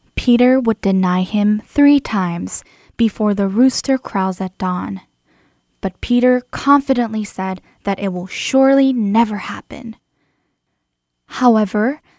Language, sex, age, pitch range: Korean, female, 10-29, 195-250 Hz